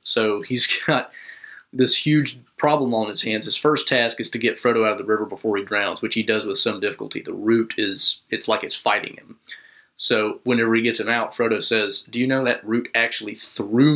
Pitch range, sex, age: 110-125 Hz, male, 30-49